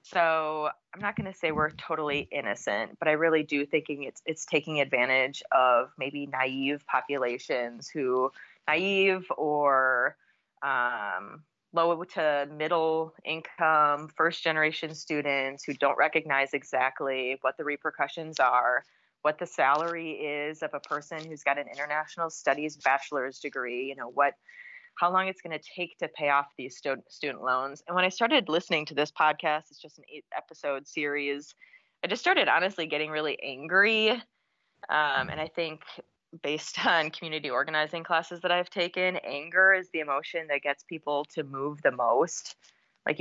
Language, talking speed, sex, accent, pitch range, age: English, 160 wpm, female, American, 145-170 Hz, 30-49